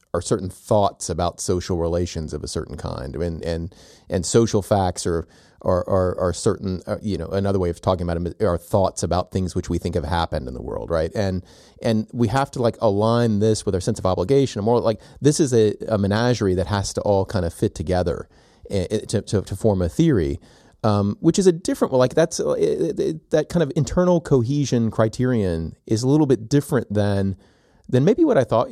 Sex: male